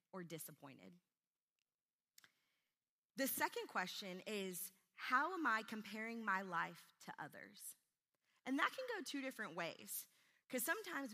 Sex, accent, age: female, American, 30-49